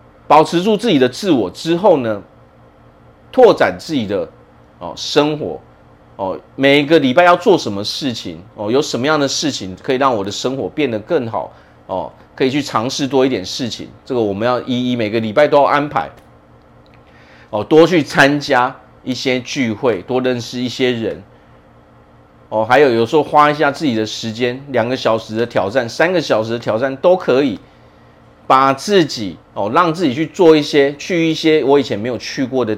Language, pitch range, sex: Chinese, 95-140 Hz, male